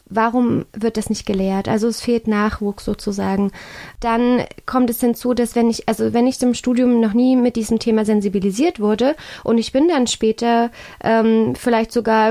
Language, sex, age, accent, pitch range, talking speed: German, female, 20-39, German, 210-245 Hz, 180 wpm